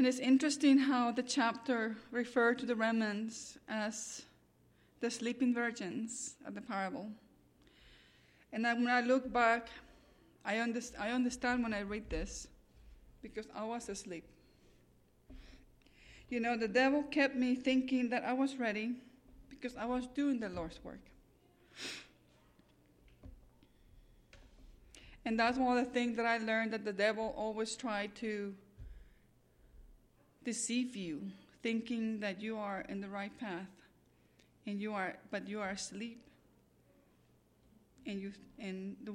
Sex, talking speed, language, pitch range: female, 135 wpm, English, 200-250 Hz